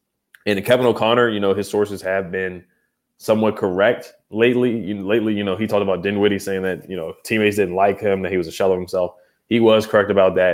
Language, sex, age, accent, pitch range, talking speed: English, male, 20-39, American, 95-120 Hz, 220 wpm